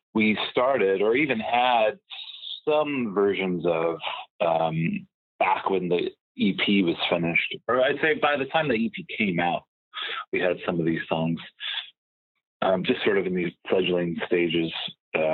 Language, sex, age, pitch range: English, male, 30-49, 85-110 Hz